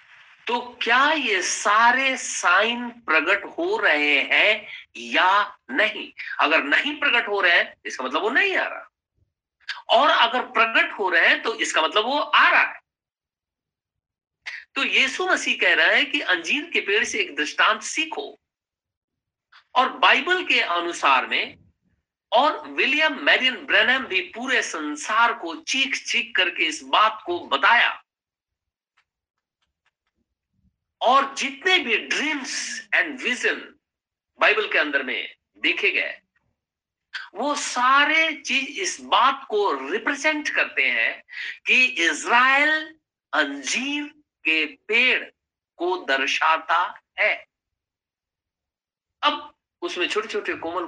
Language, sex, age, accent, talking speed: Hindi, male, 50-69, native, 120 wpm